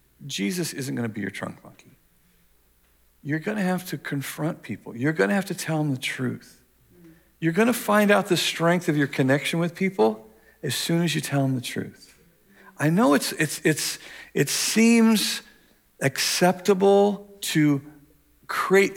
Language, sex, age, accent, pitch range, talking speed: English, male, 50-69, American, 115-185 Hz, 165 wpm